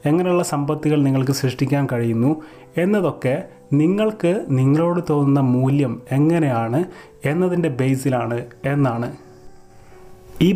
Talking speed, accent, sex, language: 85 wpm, native, male, Malayalam